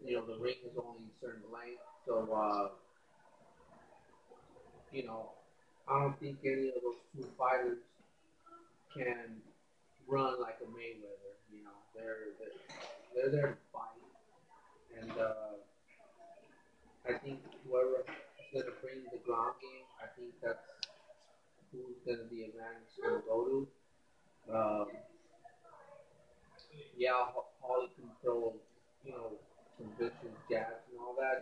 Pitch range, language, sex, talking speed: 110-135 Hz, English, male, 135 wpm